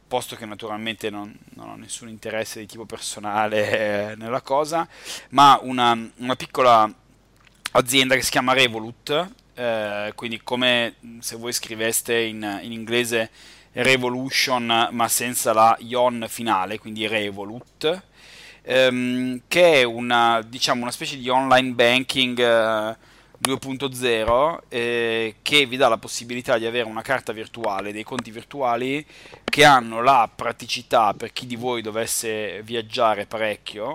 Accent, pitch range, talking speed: native, 110-130 Hz, 135 wpm